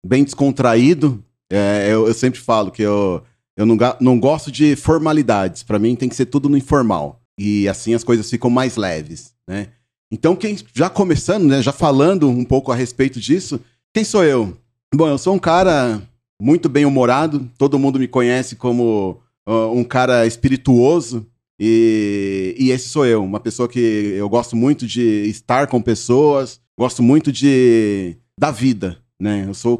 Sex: male